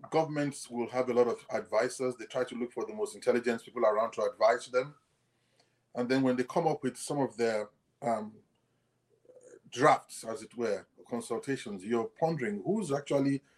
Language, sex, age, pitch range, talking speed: English, male, 30-49, 115-145 Hz, 175 wpm